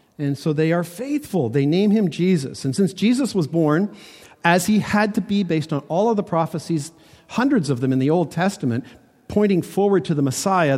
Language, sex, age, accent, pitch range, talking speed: English, male, 50-69, American, 135-185 Hz, 205 wpm